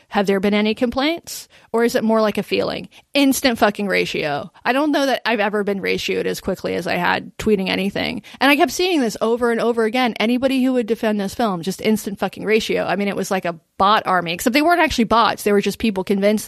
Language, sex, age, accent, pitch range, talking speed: English, female, 20-39, American, 200-250 Hz, 245 wpm